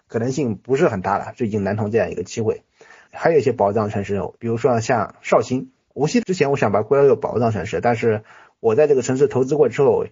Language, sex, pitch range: Chinese, male, 115-180 Hz